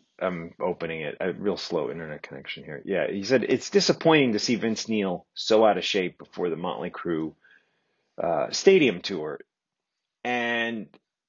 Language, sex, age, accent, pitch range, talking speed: English, male, 30-49, American, 105-140 Hz, 160 wpm